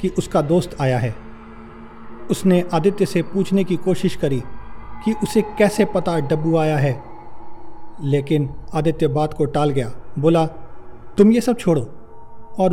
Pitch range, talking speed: 130-190 Hz, 145 wpm